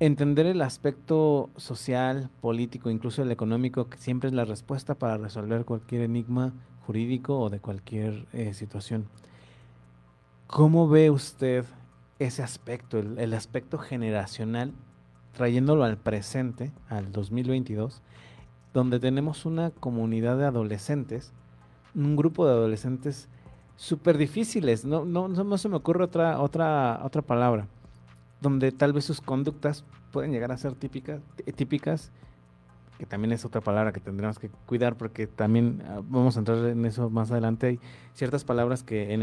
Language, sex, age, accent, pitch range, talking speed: Spanish, male, 40-59, Mexican, 110-140 Hz, 140 wpm